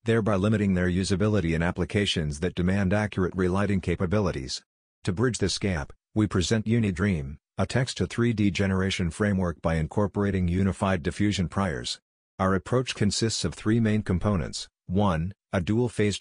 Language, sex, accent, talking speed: English, male, American, 145 wpm